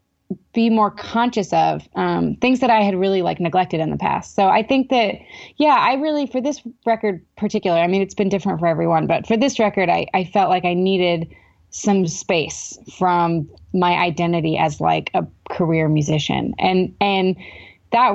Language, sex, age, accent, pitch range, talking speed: English, female, 20-39, American, 170-220 Hz, 185 wpm